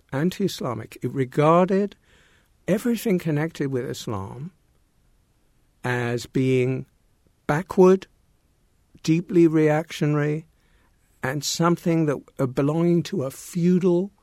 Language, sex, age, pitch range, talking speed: English, male, 60-79, 130-165 Hz, 85 wpm